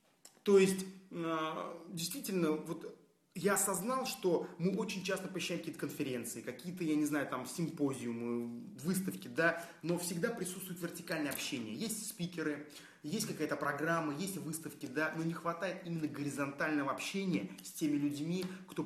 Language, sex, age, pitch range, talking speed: Russian, male, 30-49, 150-180 Hz, 140 wpm